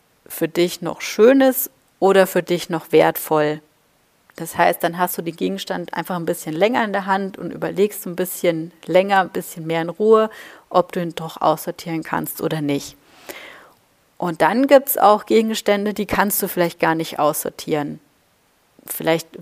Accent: German